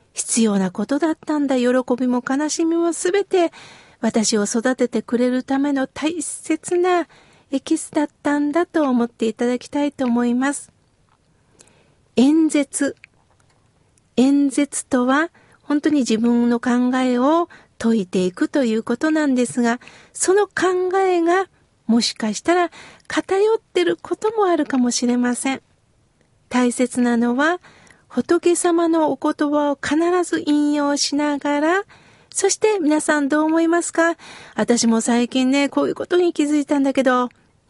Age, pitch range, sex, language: 50-69, 240-330 Hz, female, Japanese